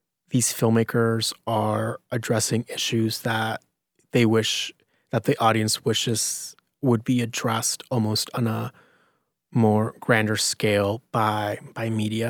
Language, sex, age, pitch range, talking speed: English, male, 20-39, 110-125 Hz, 115 wpm